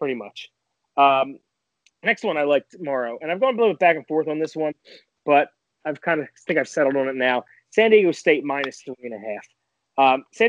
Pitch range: 130-165 Hz